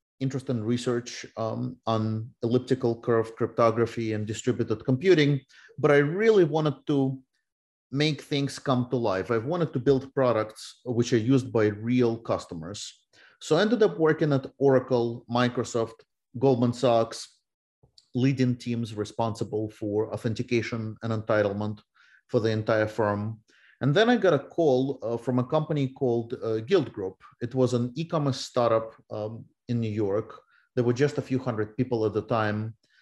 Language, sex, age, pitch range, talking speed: English, male, 30-49, 110-135 Hz, 155 wpm